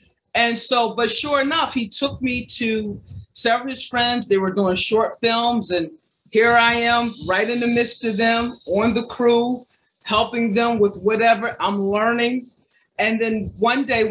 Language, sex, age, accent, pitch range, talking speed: English, female, 40-59, American, 200-240 Hz, 175 wpm